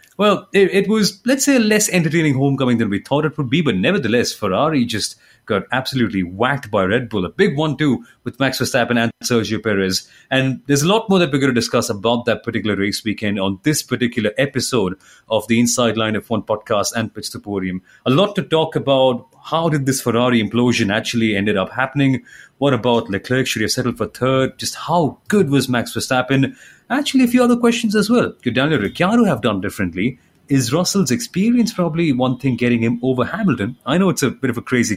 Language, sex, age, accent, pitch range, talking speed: English, male, 30-49, Indian, 115-160 Hz, 215 wpm